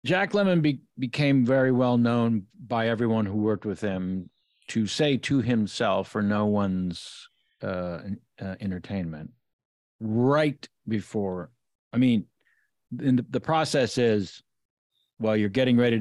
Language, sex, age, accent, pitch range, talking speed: English, male, 50-69, American, 100-125 Hz, 125 wpm